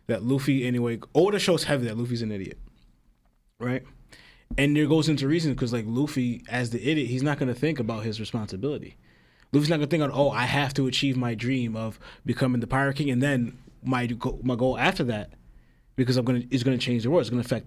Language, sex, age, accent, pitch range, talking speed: English, male, 20-39, American, 120-145 Hz, 240 wpm